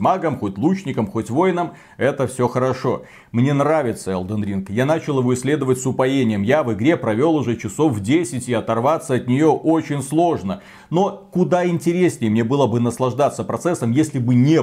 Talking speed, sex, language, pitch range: 175 wpm, male, Russian, 120-160 Hz